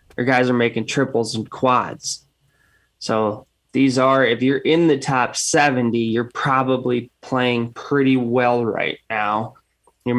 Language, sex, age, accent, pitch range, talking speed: English, male, 20-39, American, 115-135 Hz, 135 wpm